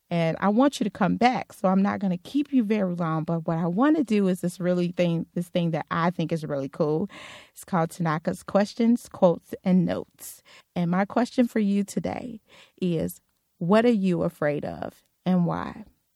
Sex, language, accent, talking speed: female, English, American, 205 wpm